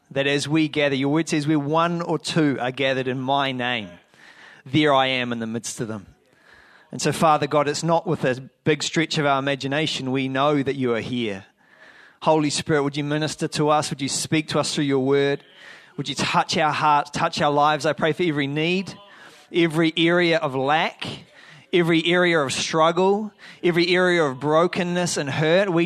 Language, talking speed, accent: English, 200 wpm, Australian